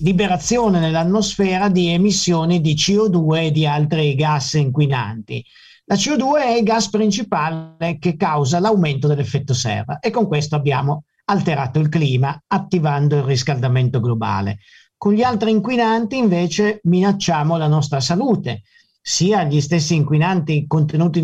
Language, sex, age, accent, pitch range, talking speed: Italian, male, 50-69, native, 150-195 Hz, 135 wpm